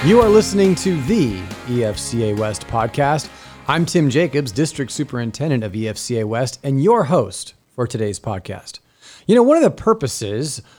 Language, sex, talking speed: English, male, 155 wpm